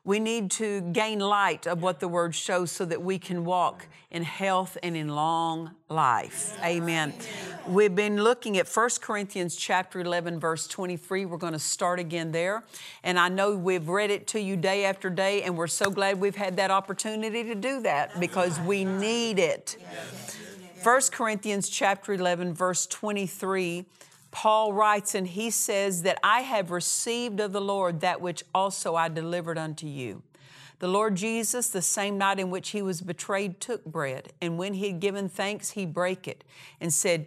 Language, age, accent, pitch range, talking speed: English, 50-69, American, 170-205 Hz, 180 wpm